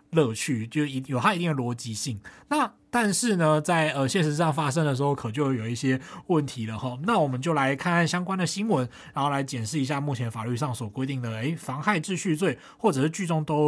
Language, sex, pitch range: Chinese, male, 130-165 Hz